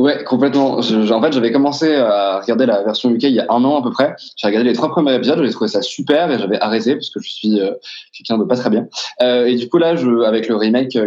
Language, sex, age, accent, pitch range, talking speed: French, male, 20-39, French, 120-190 Hz, 280 wpm